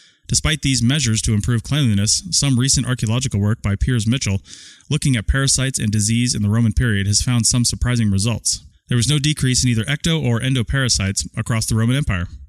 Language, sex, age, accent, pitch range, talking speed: English, male, 30-49, American, 105-125 Hz, 190 wpm